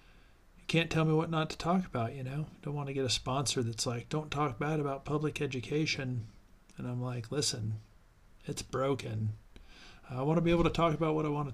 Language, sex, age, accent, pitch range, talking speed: English, male, 40-59, American, 110-140 Hz, 220 wpm